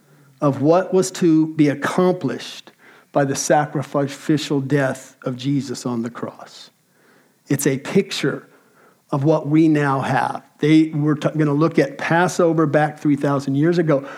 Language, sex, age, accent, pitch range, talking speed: English, male, 50-69, American, 140-170 Hz, 140 wpm